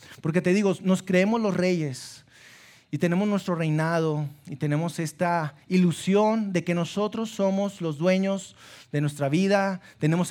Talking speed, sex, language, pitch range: 145 wpm, male, Spanish, 145-200 Hz